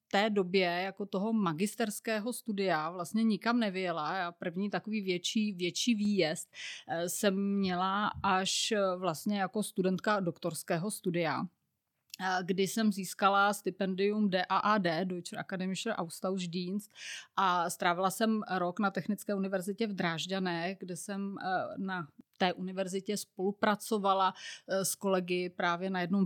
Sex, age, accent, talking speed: female, 30-49, native, 120 wpm